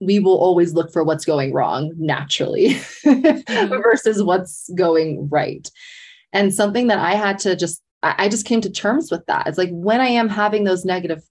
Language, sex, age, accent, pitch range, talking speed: English, female, 20-39, American, 170-230 Hz, 185 wpm